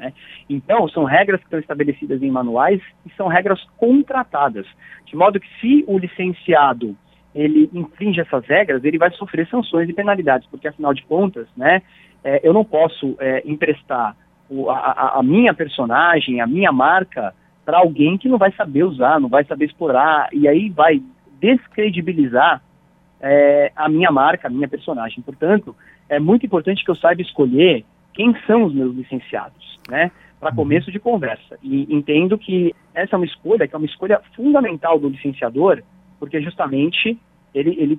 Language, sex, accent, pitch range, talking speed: Portuguese, male, Brazilian, 145-200 Hz, 160 wpm